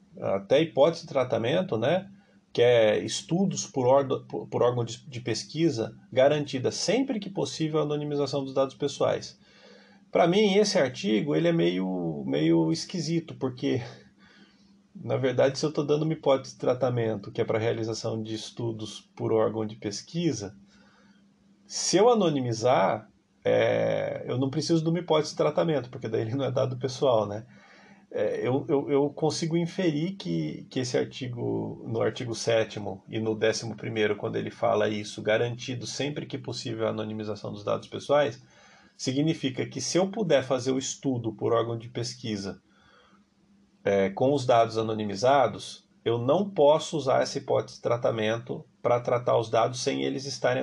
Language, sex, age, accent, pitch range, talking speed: Portuguese, male, 40-59, Brazilian, 110-165 Hz, 160 wpm